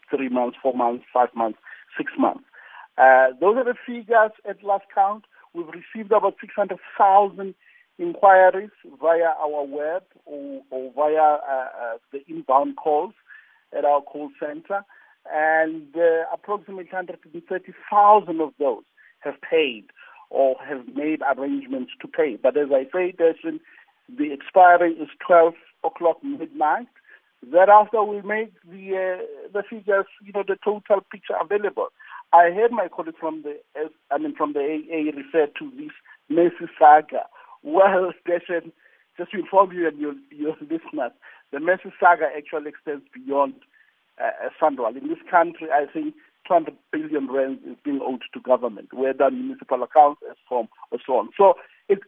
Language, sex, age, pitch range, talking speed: English, male, 50-69, 150-225 Hz, 150 wpm